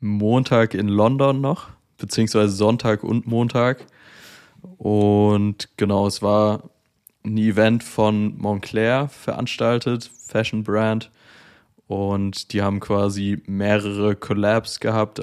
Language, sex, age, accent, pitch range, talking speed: German, male, 20-39, German, 105-115 Hz, 100 wpm